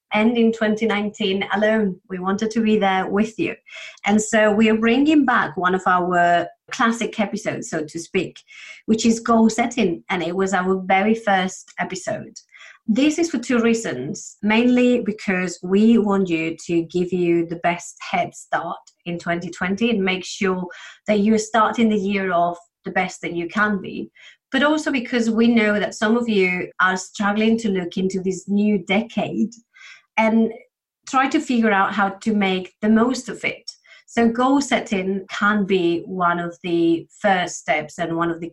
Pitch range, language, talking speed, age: 185-225 Hz, English, 175 wpm, 30-49